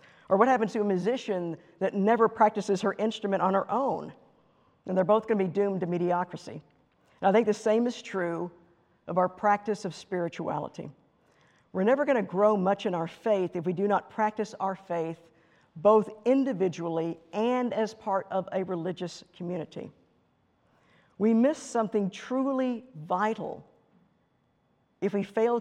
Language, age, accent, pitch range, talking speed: English, 50-69, American, 180-220 Hz, 160 wpm